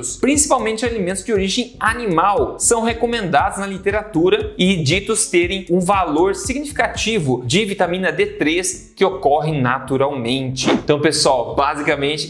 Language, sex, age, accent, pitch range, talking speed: Portuguese, male, 20-39, Brazilian, 145-205 Hz, 115 wpm